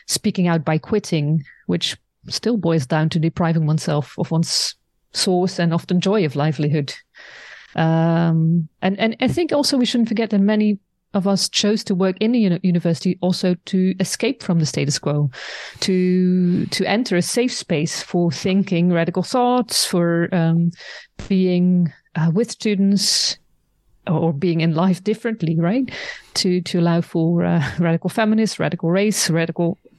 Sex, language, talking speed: female, English, 155 wpm